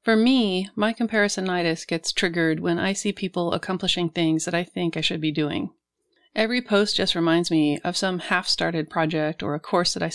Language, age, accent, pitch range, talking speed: English, 30-49, American, 155-205 Hz, 200 wpm